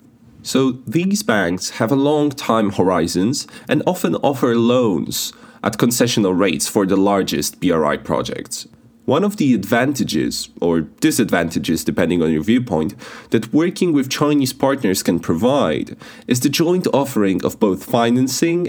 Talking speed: 140 wpm